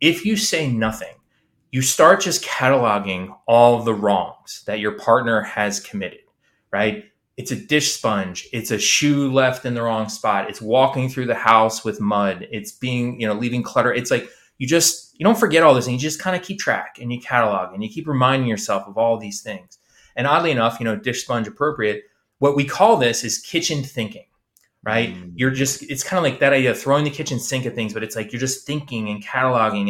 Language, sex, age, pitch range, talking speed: English, male, 20-39, 110-135 Hz, 225 wpm